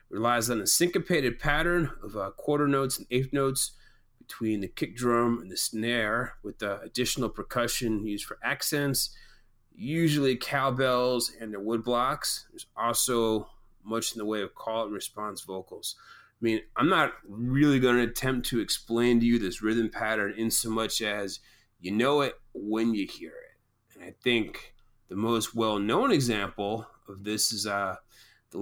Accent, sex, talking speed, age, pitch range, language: American, male, 170 wpm, 30-49, 110-135 Hz, English